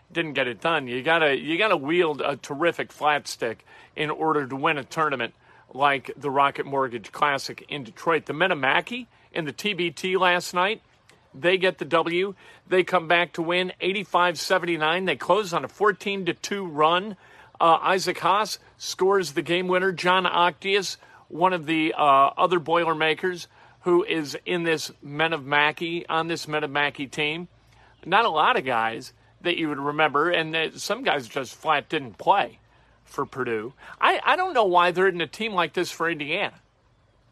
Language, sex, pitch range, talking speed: English, male, 150-180 Hz, 180 wpm